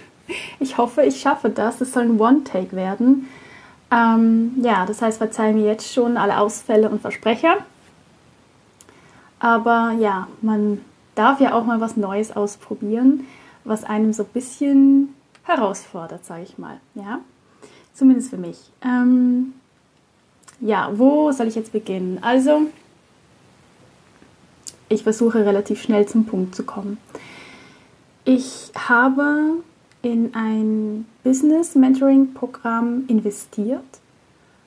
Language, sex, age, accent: German, female, 10-29, German